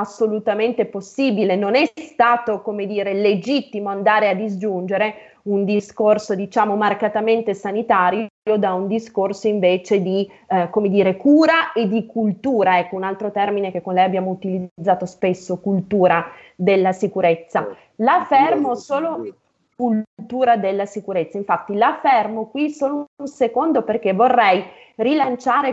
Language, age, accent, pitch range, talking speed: Italian, 20-39, native, 195-235 Hz, 130 wpm